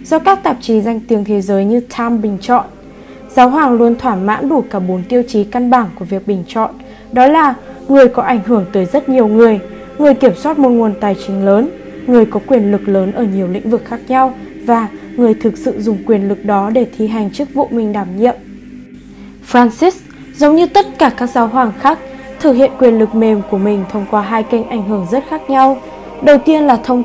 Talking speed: 225 wpm